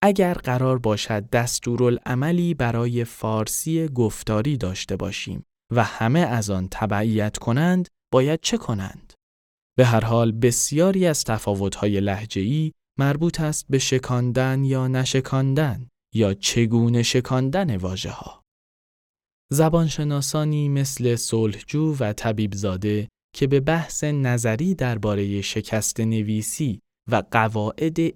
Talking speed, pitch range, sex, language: 110 wpm, 105-140 Hz, male, Persian